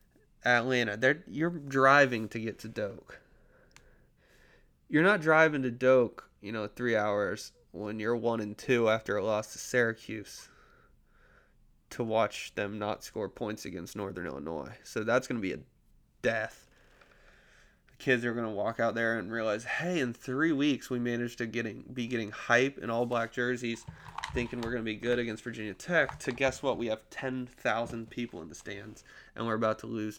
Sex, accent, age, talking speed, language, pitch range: male, American, 20-39, 185 wpm, English, 105-130 Hz